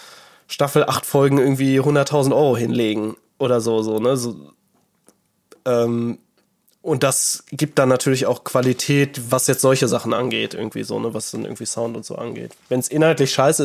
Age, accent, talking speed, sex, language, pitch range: 20-39, German, 165 wpm, male, German, 125-150 Hz